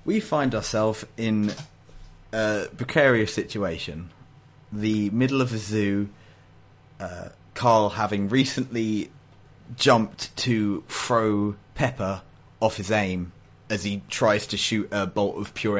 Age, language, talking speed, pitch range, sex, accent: 30-49, English, 120 wpm, 90-115 Hz, male, British